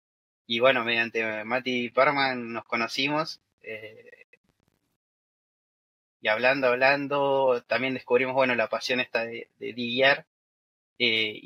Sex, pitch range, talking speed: male, 120-160 Hz, 120 wpm